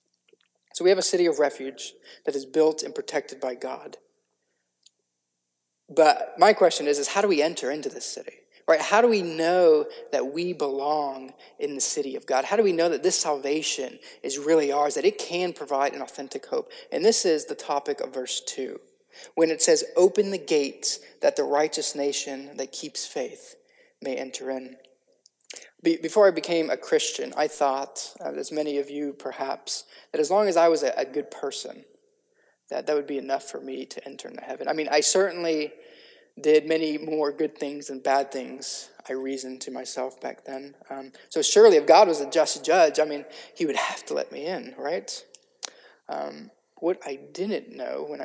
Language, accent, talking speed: English, American, 190 wpm